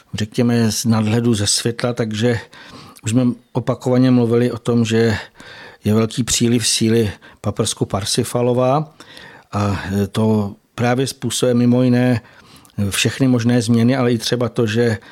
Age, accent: 50-69, native